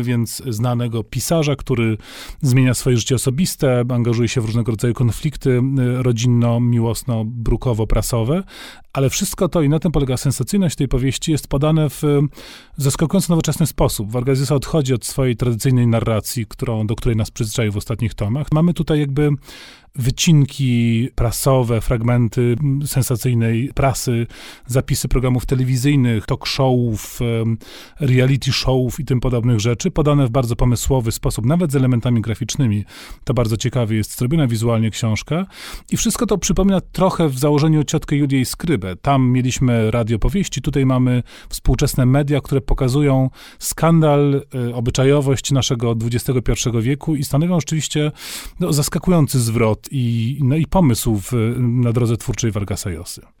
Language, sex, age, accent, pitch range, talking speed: Polish, male, 30-49, native, 120-145 Hz, 130 wpm